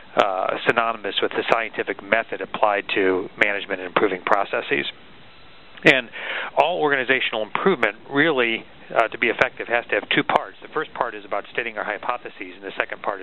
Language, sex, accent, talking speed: English, male, American, 170 wpm